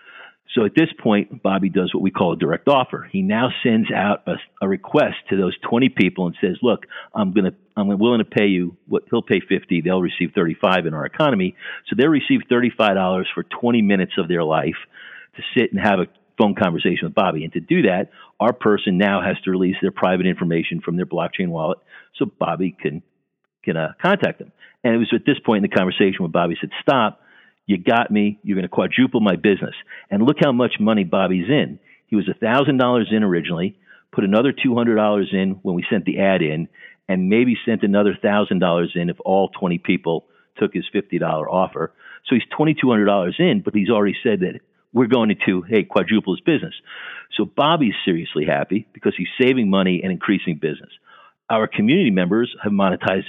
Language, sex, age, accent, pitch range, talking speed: English, male, 50-69, American, 90-115 Hz, 200 wpm